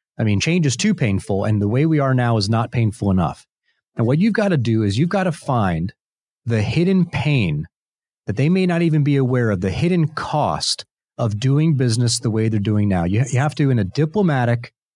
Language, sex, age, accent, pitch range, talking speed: English, male, 30-49, American, 115-155 Hz, 225 wpm